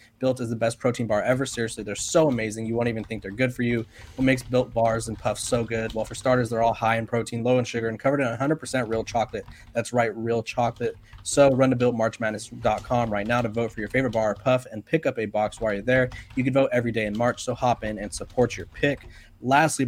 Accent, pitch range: American, 110-130 Hz